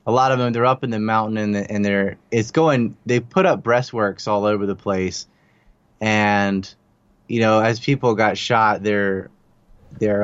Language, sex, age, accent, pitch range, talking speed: English, male, 20-39, American, 105-130 Hz, 175 wpm